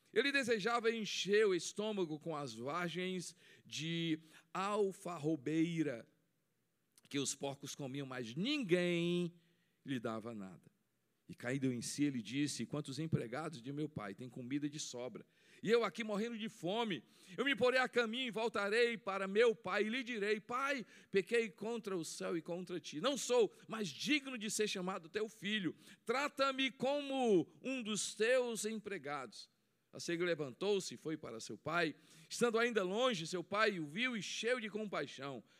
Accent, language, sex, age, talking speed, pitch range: Brazilian, Portuguese, male, 50-69, 160 wpm, 160-225 Hz